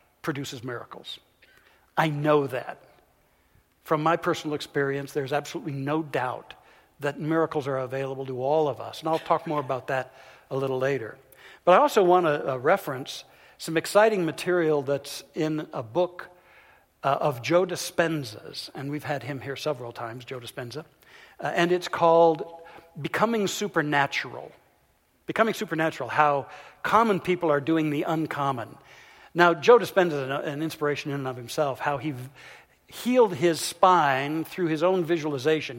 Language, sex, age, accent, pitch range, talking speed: English, male, 60-79, American, 135-170 Hz, 150 wpm